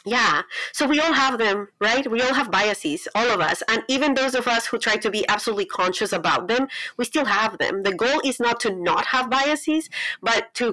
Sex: female